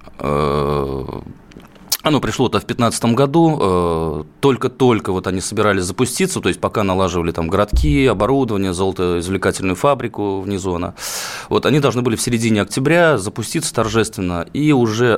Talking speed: 125 wpm